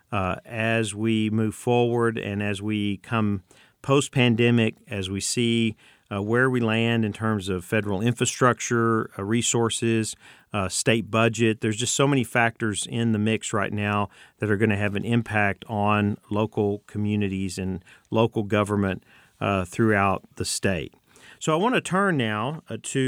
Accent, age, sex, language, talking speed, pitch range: American, 50-69, male, English, 160 wpm, 105-125 Hz